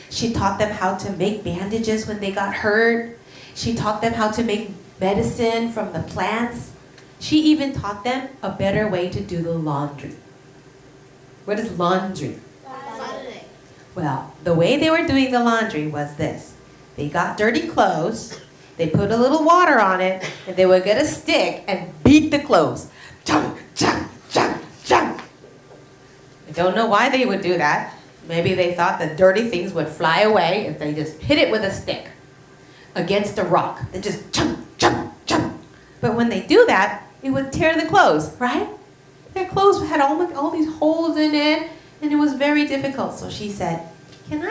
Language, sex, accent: Korean, female, American